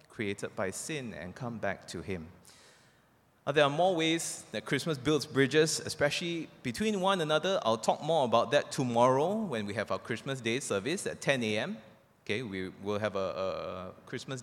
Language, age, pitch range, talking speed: English, 20-39, 110-160 Hz, 185 wpm